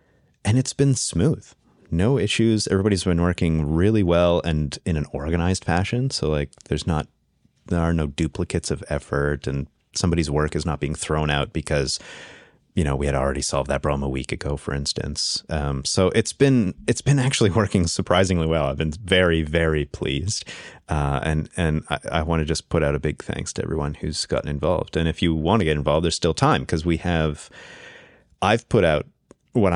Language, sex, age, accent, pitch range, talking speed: English, male, 30-49, American, 75-95 Hz, 195 wpm